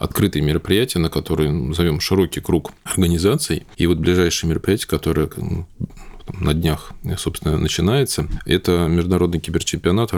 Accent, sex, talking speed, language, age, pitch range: native, male, 125 wpm, Russian, 20-39, 80-95 Hz